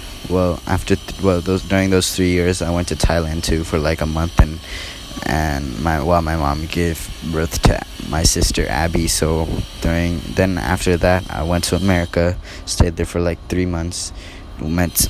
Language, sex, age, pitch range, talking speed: English, male, 20-39, 85-95 Hz, 185 wpm